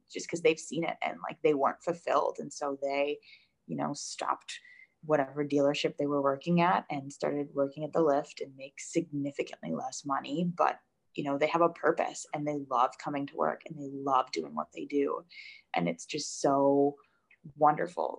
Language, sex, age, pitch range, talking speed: English, female, 20-39, 145-175 Hz, 190 wpm